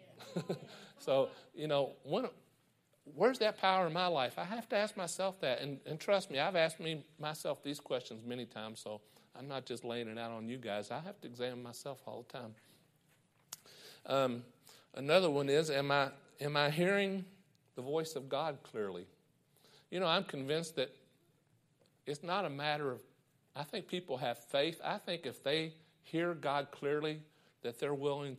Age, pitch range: 50-69, 120-155 Hz